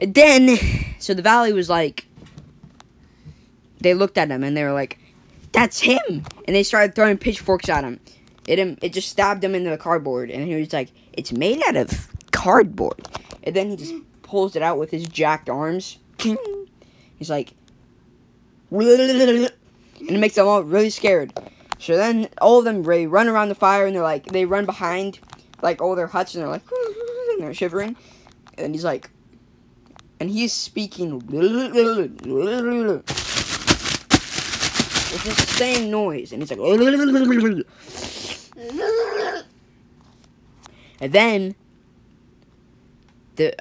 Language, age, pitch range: English, 10-29, 165-235 Hz